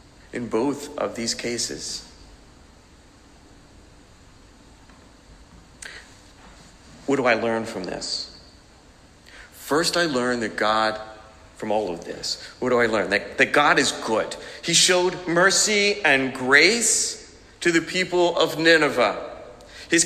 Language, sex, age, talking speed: English, male, 50-69, 120 wpm